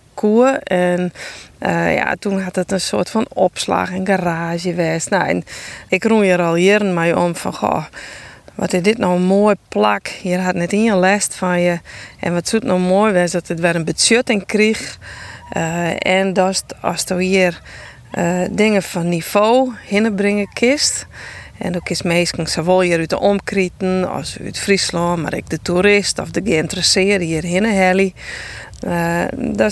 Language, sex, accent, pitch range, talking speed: Dutch, female, Dutch, 175-205 Hz, 180 wpm